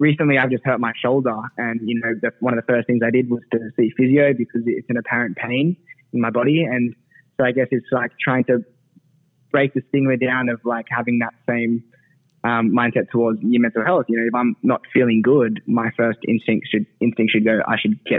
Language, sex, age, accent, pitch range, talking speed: English, male, 20-39, Australian, 115-130 Hz, 225 wpm